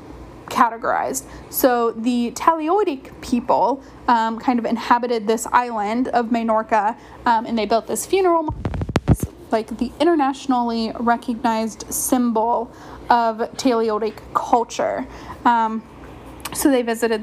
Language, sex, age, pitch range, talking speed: English, female, 10-29, 235-285 Hz, 110 wpm